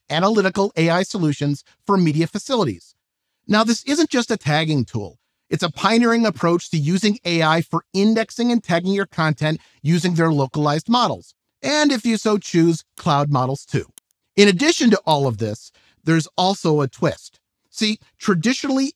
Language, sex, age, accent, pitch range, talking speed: English, male, 50-69, American, 150-225 Hz, 160 wpm